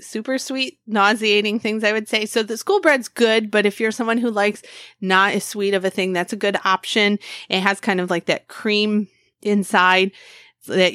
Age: 30-49